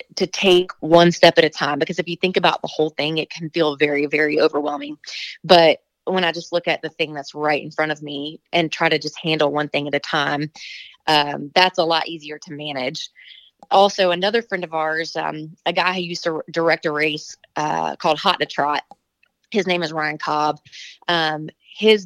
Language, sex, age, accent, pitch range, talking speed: English, female, 20-39, American, 155-185 Hz, 210 wpm